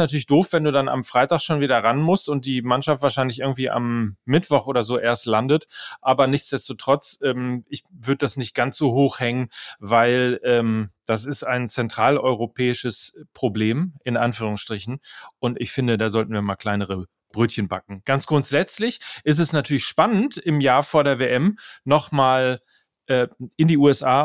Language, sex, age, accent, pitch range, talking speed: German, male, 40-59, German, 125-150 Hz, 170 wpm